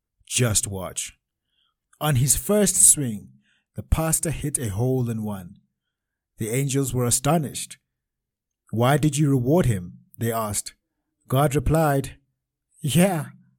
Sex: male